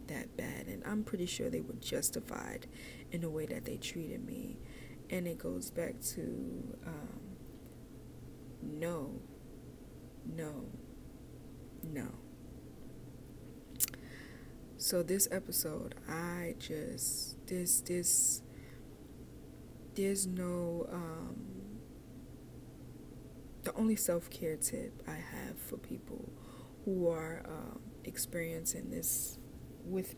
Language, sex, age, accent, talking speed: English, female, 20-39, American, 95 wpm